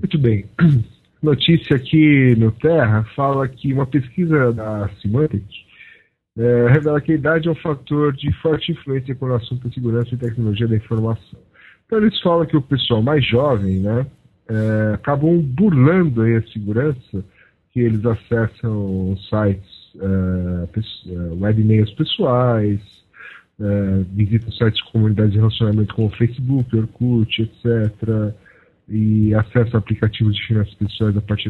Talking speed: 135 wpm